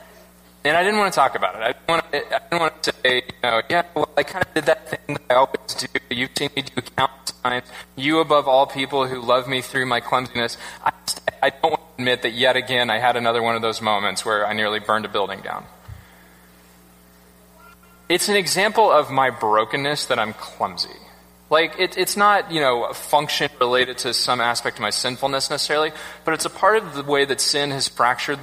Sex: male